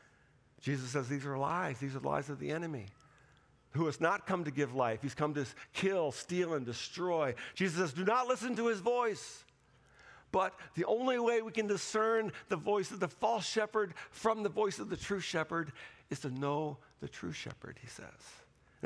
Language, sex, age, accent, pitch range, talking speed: English, male, 50-69, American, 130-175 Hz, 200 wpm